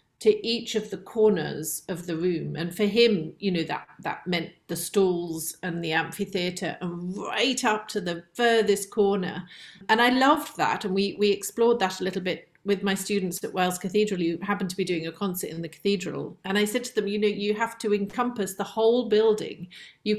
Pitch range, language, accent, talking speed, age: 175-210 Hz, English, British, 210 wpm, 40-59